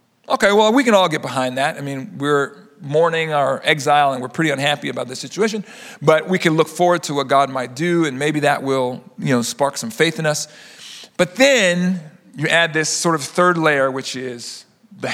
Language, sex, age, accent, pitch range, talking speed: English, male, 40-59, American, 145-200 Hz, 215 wpm